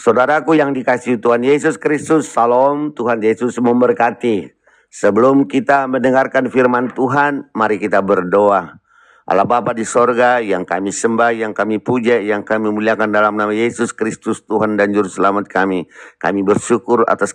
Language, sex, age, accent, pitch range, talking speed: Indonesian, male, 50-69, native, 100-125 Hz, 145 wpm